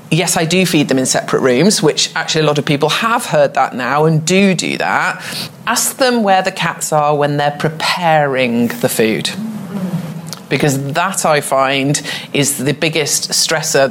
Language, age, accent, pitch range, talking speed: English, 40-59, British, 150-185 Hz, 175 wpm